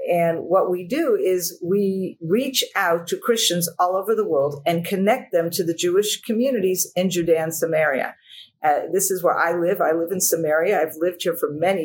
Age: 50-69